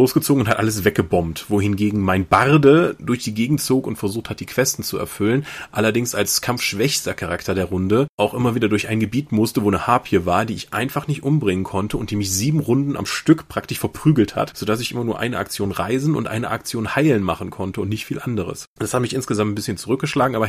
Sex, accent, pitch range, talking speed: male, German, 105-135 Hz, 225 wpm